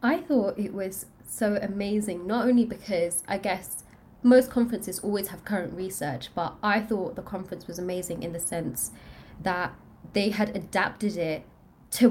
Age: 20-39